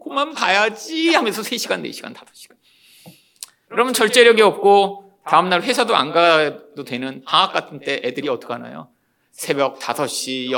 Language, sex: Korean, male